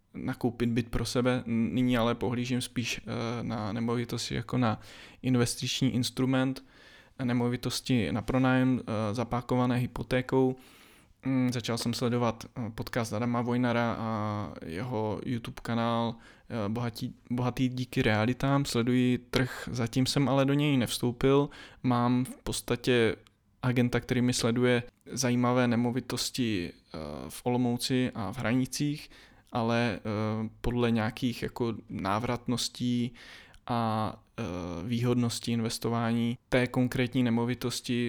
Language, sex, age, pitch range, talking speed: Czech, male, 20-39, 115-125 Hz, 105 wpm